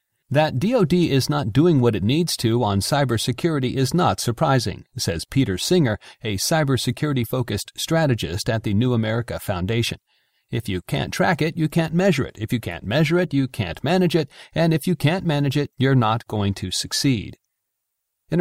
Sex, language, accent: male, English, American